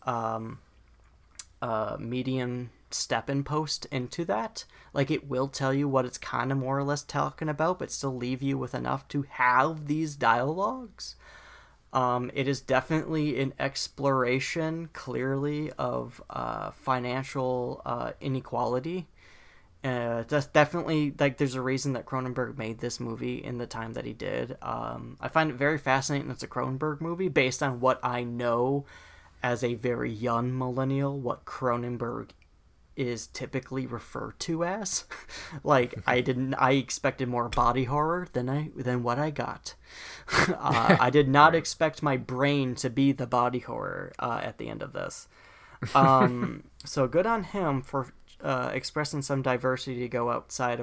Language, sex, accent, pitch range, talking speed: English, male, American, 120-145 Hz, 160 wpm